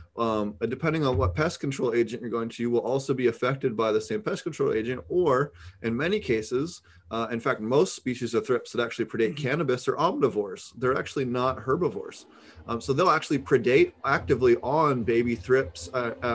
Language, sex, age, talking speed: English, male, 30-49, 185 wpm